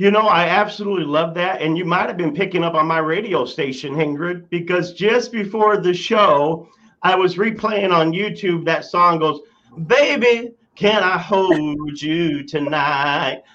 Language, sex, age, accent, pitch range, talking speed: English, male, 40-59, American, 170-215 Hz, 165 wpm